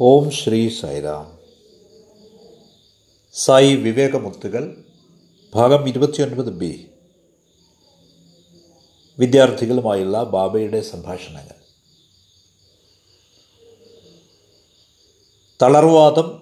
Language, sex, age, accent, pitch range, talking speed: Malayalam, male, 50-69, native, 95-160 Hz, 45 wpm